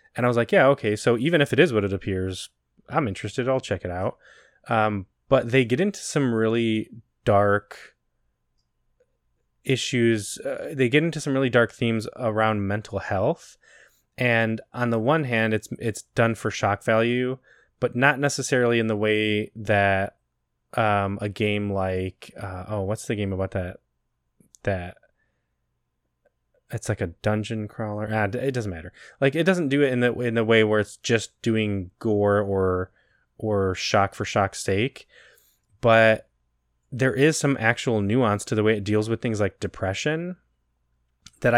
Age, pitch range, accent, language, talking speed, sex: 20-39, 100-120 Hz, American, English, 165 wpm, male